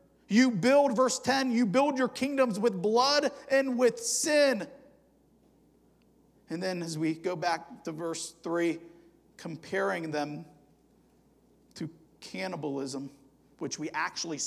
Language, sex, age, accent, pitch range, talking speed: English, male, 50-69, American, 150-185 Hz, 120 wpm